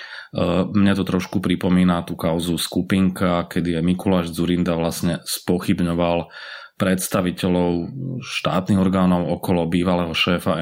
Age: 30-49